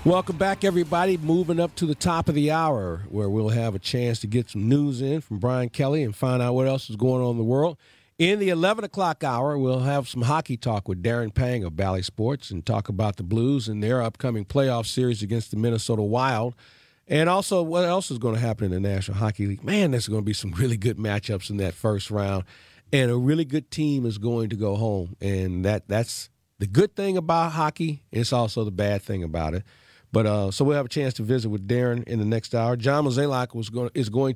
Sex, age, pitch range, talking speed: male, 50-69, 110-140 Hz, 240 wpm